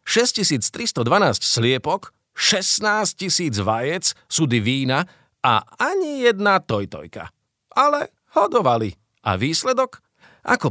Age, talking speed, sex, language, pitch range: 40-59, 85 wpm, male, Slovak, 110-155 Hz